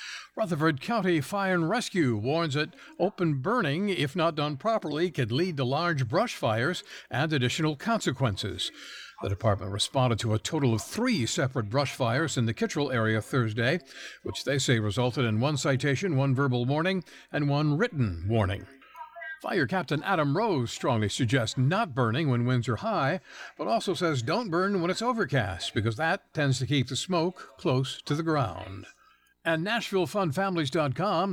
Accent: American